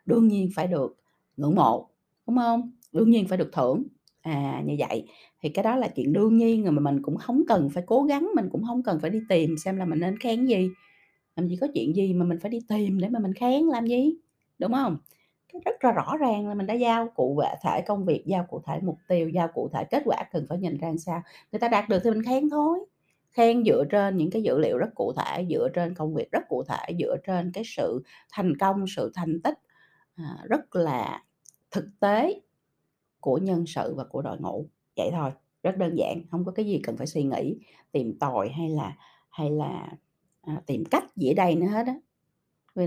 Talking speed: 230 wpm